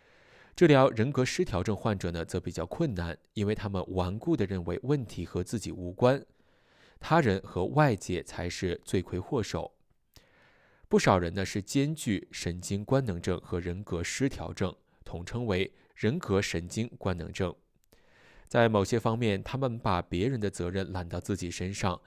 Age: 20-39